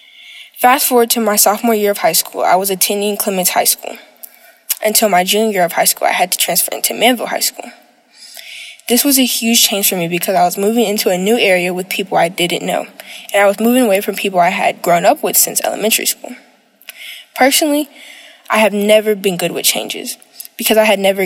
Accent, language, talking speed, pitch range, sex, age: American, English, 215 wpm, 195-245 Hz, female, 10-29